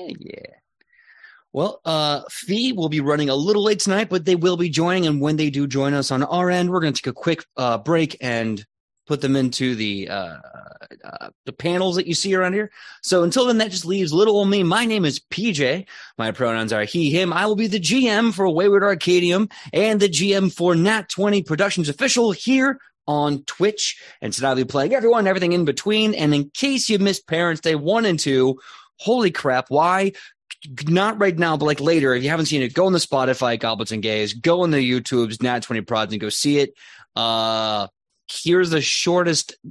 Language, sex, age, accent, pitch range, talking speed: English, male, 30-49, American, 125-185 Hz, 210 wpm